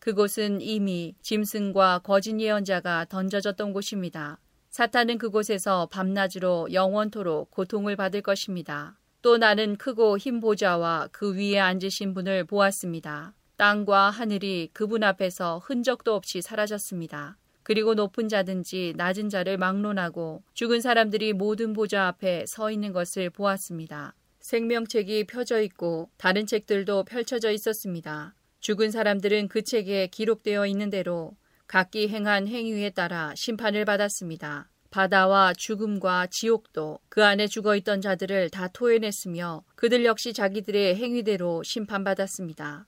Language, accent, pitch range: Korean, native, 185-215 Hz